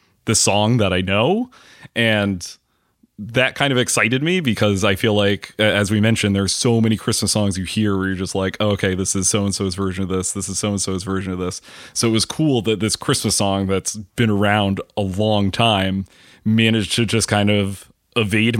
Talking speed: 200 wpm